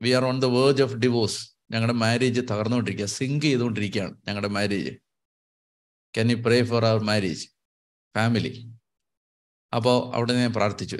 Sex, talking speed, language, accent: male, 135 wpm, Malayalam, native